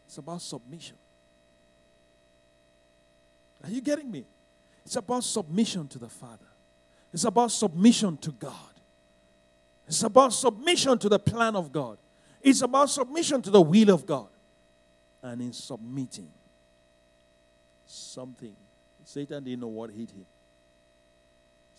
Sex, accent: male, Nigerian